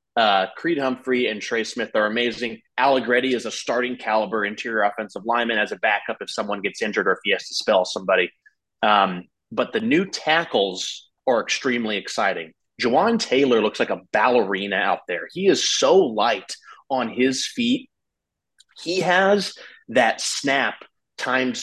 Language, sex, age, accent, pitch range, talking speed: English, male, 30-49, American, 110-140 Hz, 160 wpm